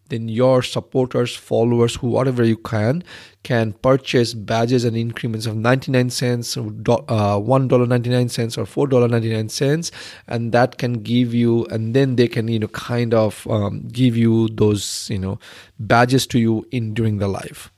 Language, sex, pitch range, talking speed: English, male, 110-125 Hz, 180 wpm